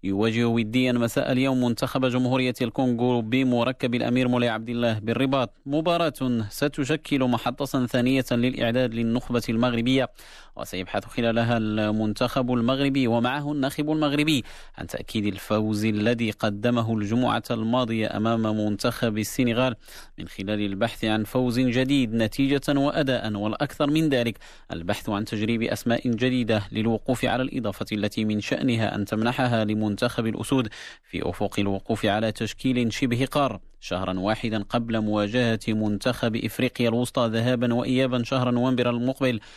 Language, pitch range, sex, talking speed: Arabic, 110-130 Hz, male, 125 wpm